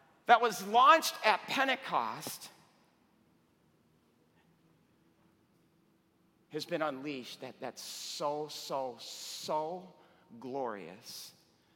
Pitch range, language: 110-150 Hz, English